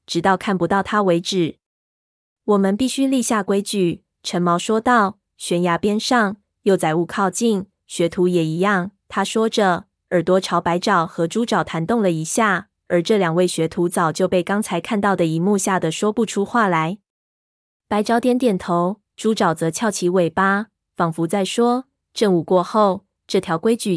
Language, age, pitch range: Chinese, 20-39, 175-210 Hz